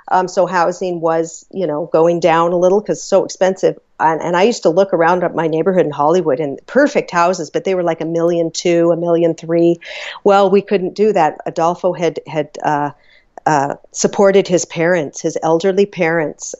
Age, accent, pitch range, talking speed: 50-69, American, 160-190 Hz, 195 wpm